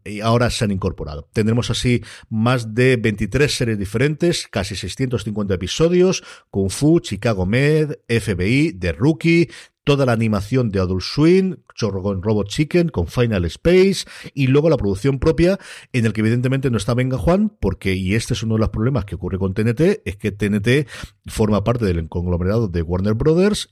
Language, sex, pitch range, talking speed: Spanish, male, 95-130 Hz, 175 wpm